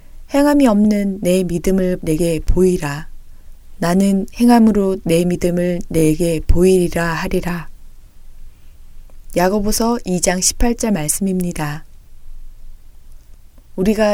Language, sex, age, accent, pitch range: Korean, female, 20-39, native, 165-210 Hz